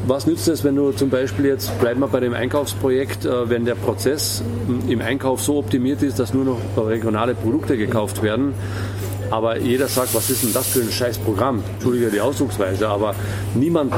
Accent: German